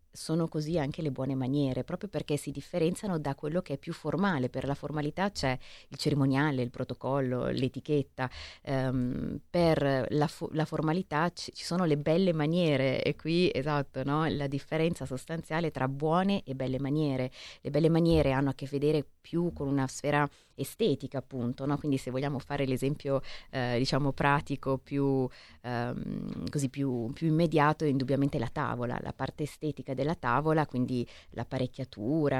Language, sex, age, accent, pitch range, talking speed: Italian, female, 20-39, native, 130-155 Hz, 165 wpm